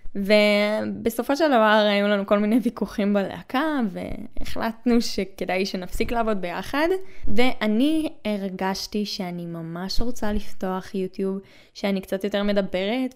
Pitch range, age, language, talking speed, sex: 190-230 Hz, 10-29, Hebrew, 115 wpm, female